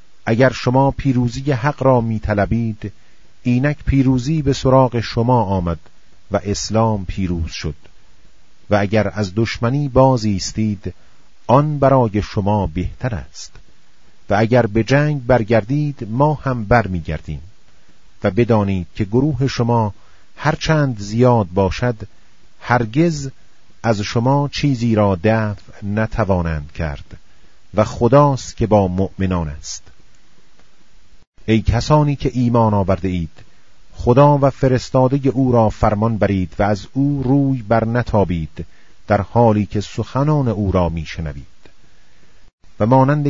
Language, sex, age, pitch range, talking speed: Persian, male, 40-59, 95-130 Hz, 120 wpm